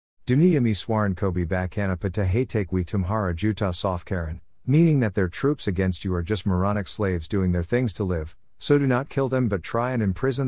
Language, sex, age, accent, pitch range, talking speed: English, male, 50-69, American, 90-115 Hz, 185 wpm